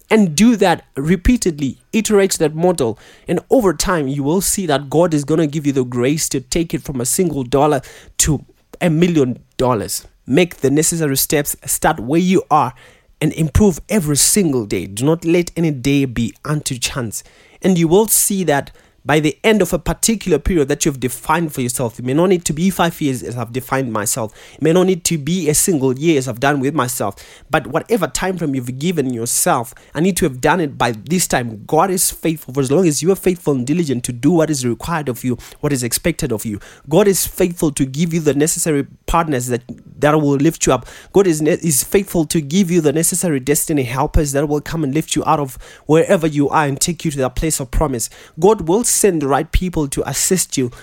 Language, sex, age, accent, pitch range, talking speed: English, male, 20-39, South African, 135-175 Hz, 225 wpm